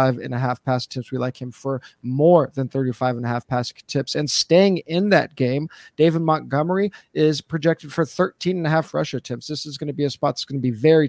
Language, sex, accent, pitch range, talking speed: English, male, American, 130-150 Hz, 245 wpm